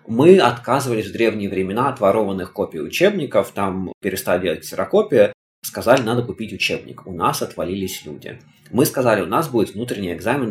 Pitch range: 95-125 Hz